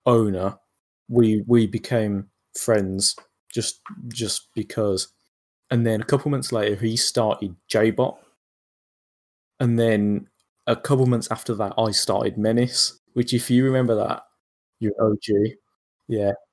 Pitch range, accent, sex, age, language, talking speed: 105-125 Hz, British, male, 20-39, English, 125 wpm